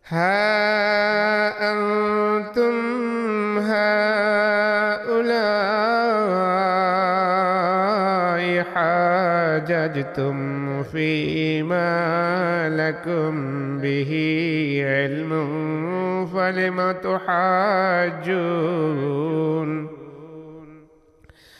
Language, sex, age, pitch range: Bengali, male, 50-69, 155-185 Hz